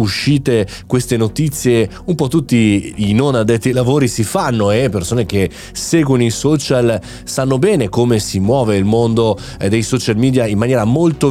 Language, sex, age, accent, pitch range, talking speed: Italian, male, 30-49, native, 95-130 Hz, 170 wpm